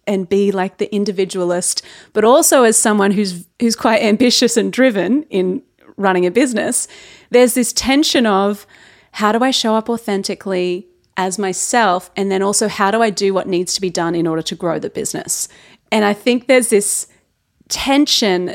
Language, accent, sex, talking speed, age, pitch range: English, Australian, female, 180 wpm, 30-49, 185-235 Hz